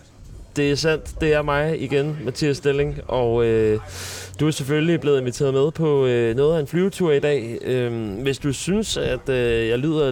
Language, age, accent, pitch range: Danish, 30-49, native, 120-155 Hz